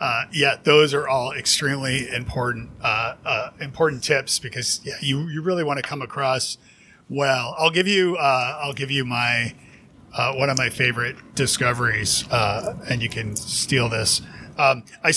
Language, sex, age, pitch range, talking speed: English, male, 40-59, 125-150 Hz, 170 wpm